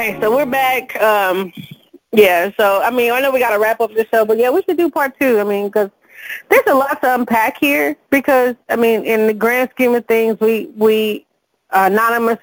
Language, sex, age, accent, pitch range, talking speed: English, female, 30-49, American, 200-225 Hz, 220 wpm